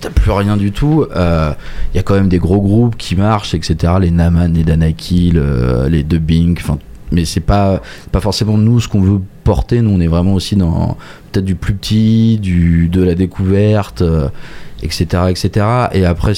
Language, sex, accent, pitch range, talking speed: French, male, French, 85-100 Hz, 195 wpm